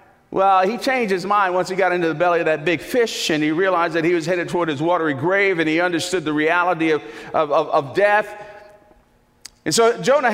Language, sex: English, male